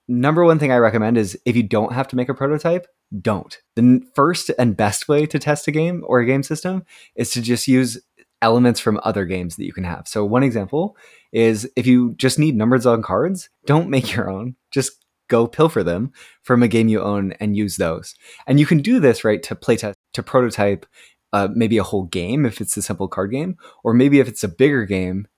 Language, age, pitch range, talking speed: English, 20-39, 100-135 Hz, 225 wpm